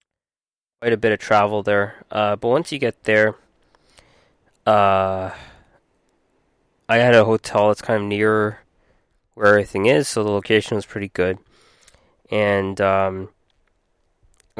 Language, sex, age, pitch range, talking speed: English, male, 20-39, 95-110 Hz, 130 wpm